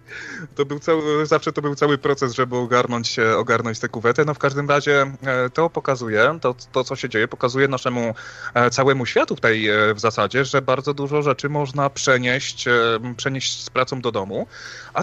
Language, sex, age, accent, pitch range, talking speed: Polish, male, 30-49, native, 120-145 Hz, 175 wpm